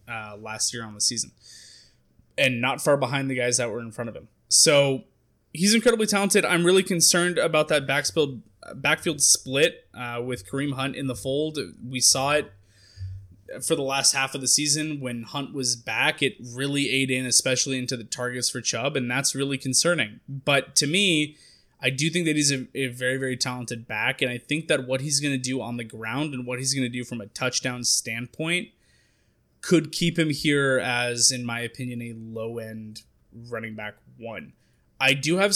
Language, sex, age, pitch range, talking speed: English, male, 20-39, 120-150 Hz, 195 wpm